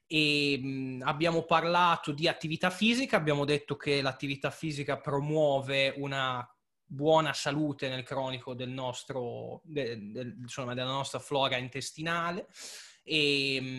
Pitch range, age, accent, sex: 135-160 Hz, 20-39, native, male